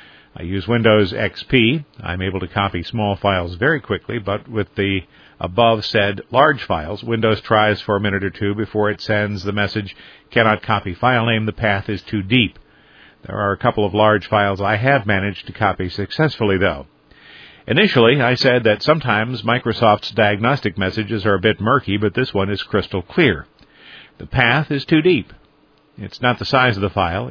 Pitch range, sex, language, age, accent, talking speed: 100-120 Hz, male, English, 50-69, American, 185 wpm